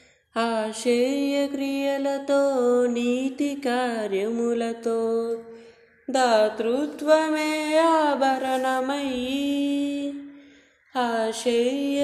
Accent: native